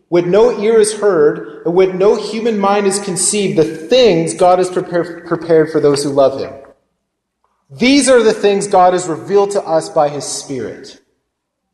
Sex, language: male, English